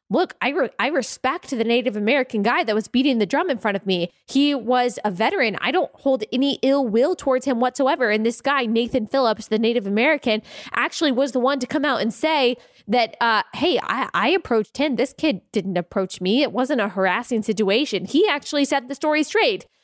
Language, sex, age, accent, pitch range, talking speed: English, female, 20-39, American, 215-275 Hz, 210 wpm